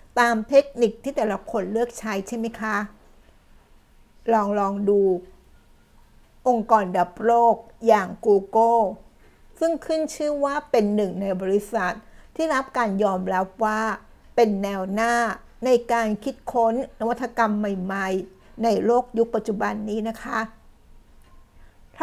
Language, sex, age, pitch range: Thai, female, 60-79, 200-240 Hz